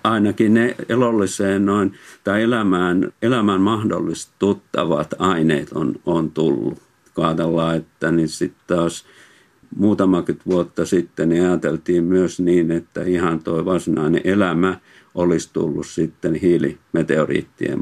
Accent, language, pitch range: native, Finnish, 80-95 Hz